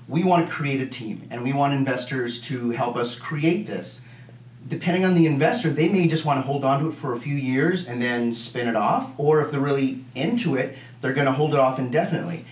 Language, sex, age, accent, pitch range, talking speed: English, male, 30-49, American, 120-150 Hz, 240 wpm